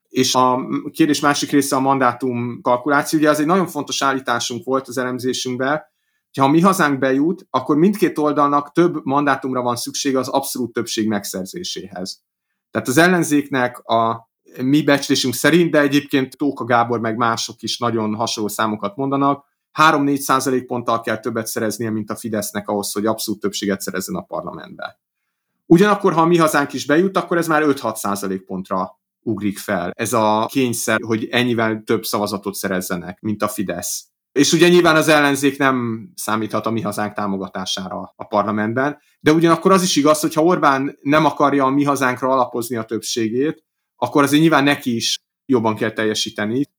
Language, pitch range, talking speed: Hungarian, 110-150 Hz, 165 wpm